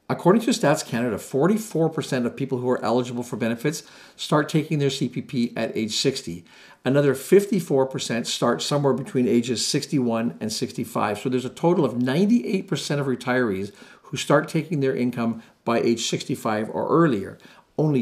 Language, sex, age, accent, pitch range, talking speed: English, male, 50-69, American, 120-150 Hz, 155 wpm